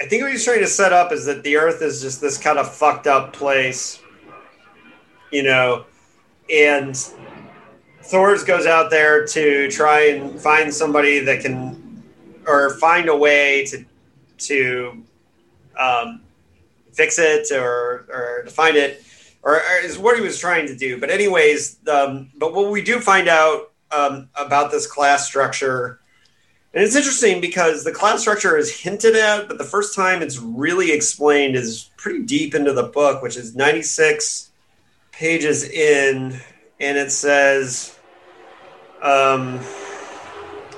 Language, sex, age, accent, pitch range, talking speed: English, male, 30-49, American, 135-180 Hz, 150 wpm